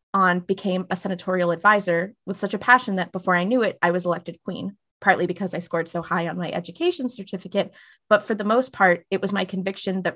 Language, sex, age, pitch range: English, female, 20-39, 185-230 Hz